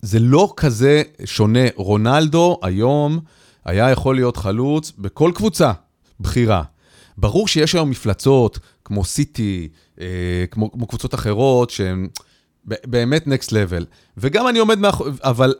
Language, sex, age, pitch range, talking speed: Hebrew, male, 30-49, 115-165 Hz, 125 wpm